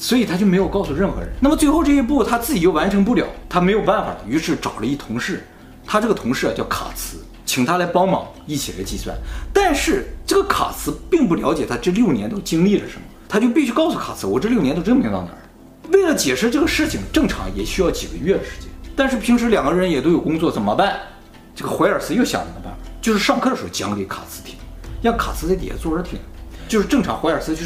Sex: male